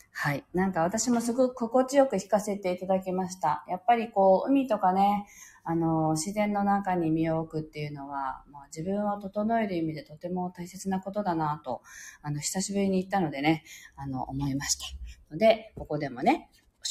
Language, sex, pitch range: Japanese, female, 155-210 Hz